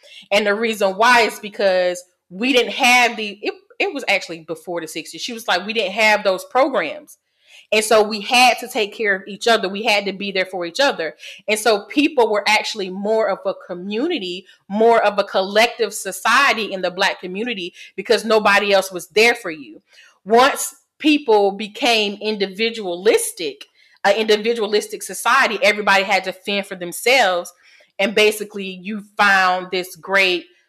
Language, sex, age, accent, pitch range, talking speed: English, female, 30-49, American, 185-225 Hz, 170 wpm